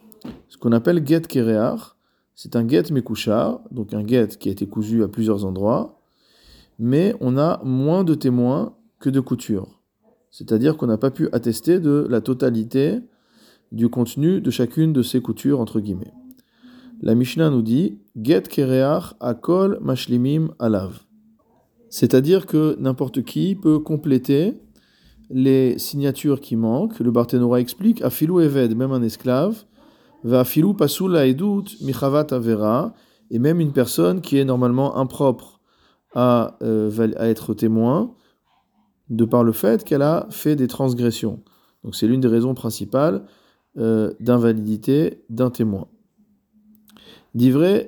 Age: 40-59